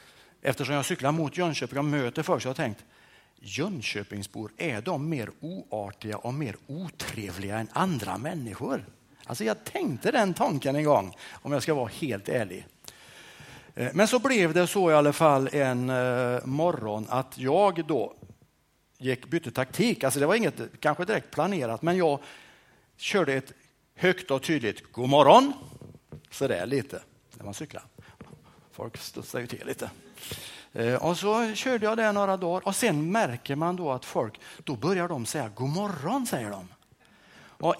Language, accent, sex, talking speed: Swedish, Norwegian, male, 160 wpm